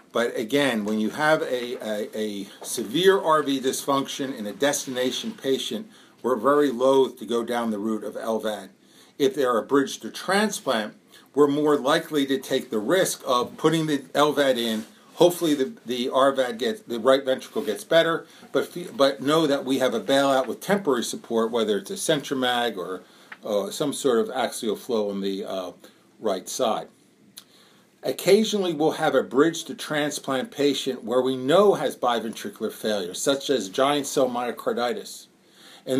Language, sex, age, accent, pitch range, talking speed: English, male, 50-69, American, 125-155 Hz, 170 wpm